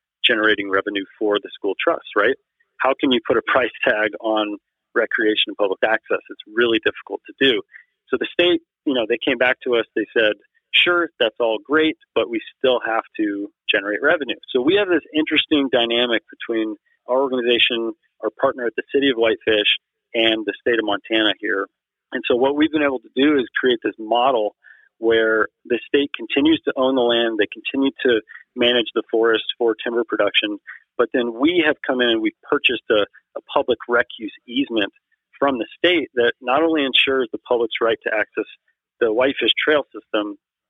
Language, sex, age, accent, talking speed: English, male, 40-59, American, 190 wpm